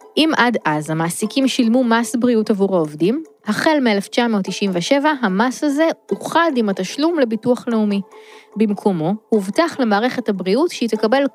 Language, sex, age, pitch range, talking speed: Hebrew, female, 20-39, 200-265 Hz, 125 wpm